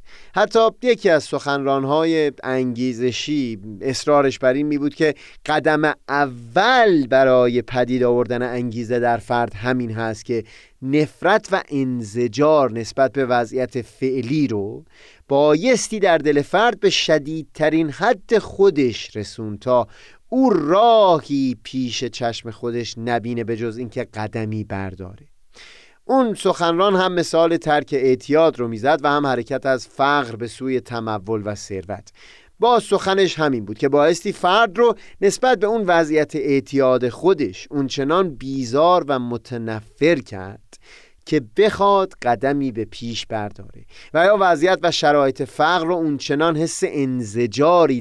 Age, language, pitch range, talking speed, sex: 30-49, Persian, 120-160 Hz, 130 wpm, male